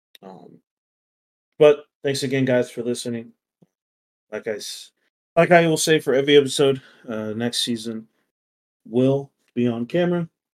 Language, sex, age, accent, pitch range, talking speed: English, male, 30-49, American, 95-120 Hz, 130 wpm